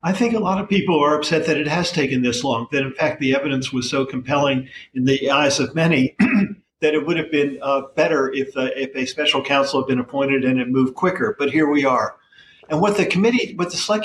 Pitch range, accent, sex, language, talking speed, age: 135-160 Hz, American, male, English, 250 wpm, 50-69